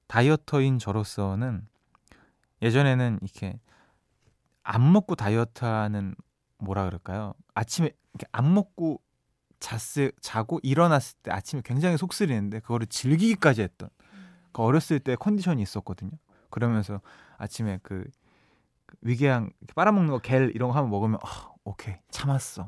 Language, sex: Korean, male